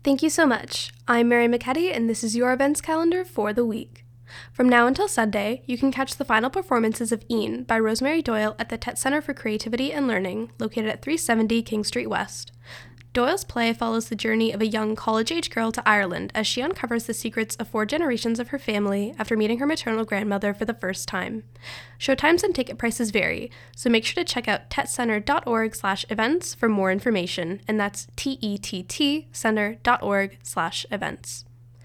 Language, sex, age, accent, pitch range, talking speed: English, female, 10-29, American, 200-250 Hz, 185 wpm